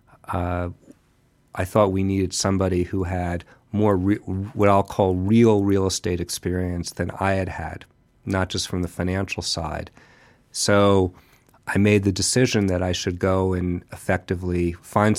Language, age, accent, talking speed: English, 40-59, American, 155 wpm